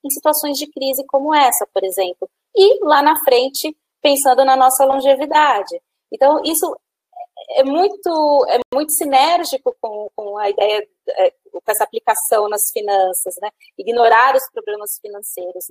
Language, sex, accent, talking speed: Portuguese, female, Brazilian, 140 wpm